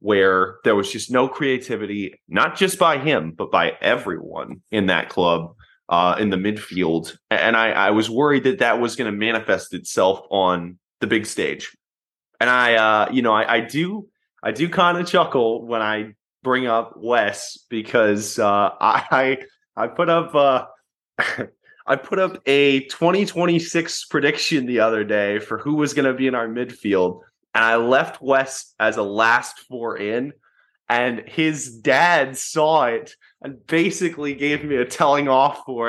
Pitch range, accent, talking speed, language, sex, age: 110-140 Hz, American, 170 wpm, English, male, 20-39